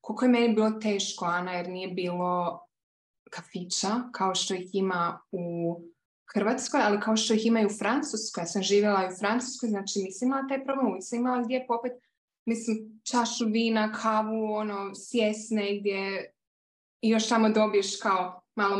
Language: Croatian